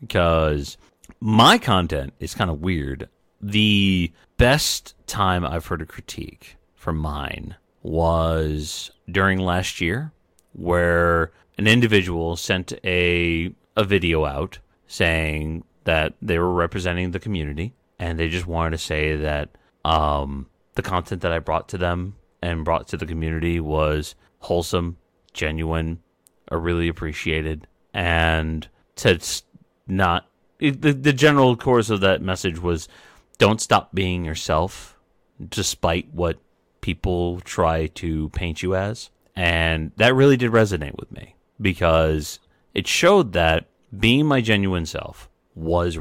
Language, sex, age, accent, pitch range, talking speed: English, male, 30-49, American, 80-95 Hz, 135 wpm